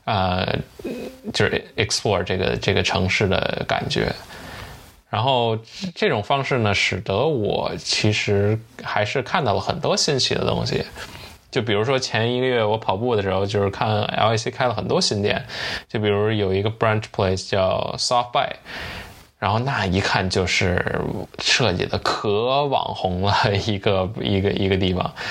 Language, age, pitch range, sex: Chinese, 10-29, 95-110 Hz, male